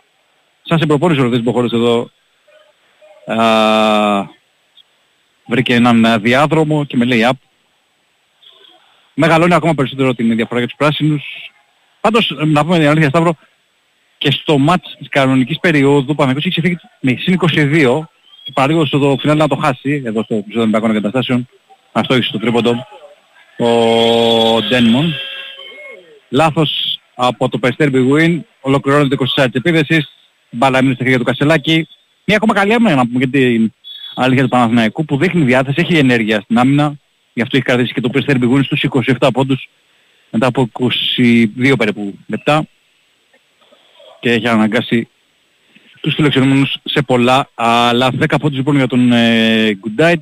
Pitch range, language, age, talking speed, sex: 120-160 Hz, Greek, 40-59, 145 wpm, male